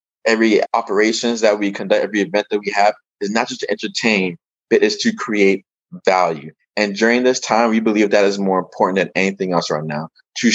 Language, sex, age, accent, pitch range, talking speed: English, male, 20-39, American, 100-125 Hz, 205 wpm